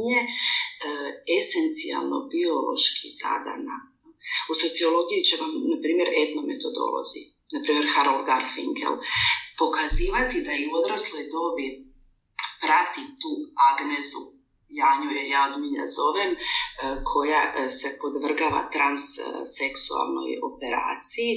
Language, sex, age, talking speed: Croatian, female, 40-59, 85 wpm